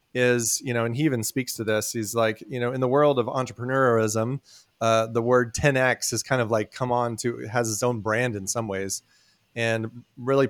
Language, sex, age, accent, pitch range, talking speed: English, male, 30-49, American, 110-125 Hz, 215 wpm